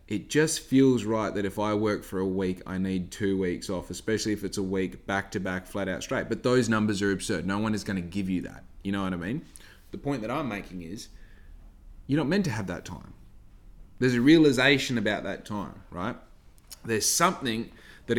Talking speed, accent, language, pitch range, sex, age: 225 wpm, Australian, English, 100-130 Hz, male, 20-39